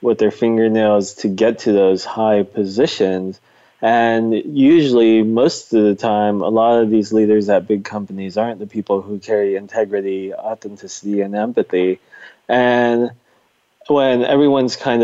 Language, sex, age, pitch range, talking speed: English, male, 20-39, 100-115 Hz, 145 wpm